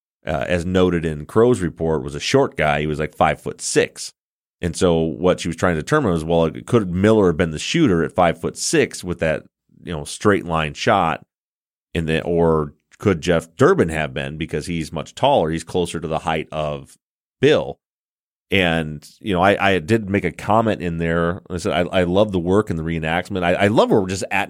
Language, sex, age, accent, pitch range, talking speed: English, male, 30-49, American, 80-100 Hz, 220 wpm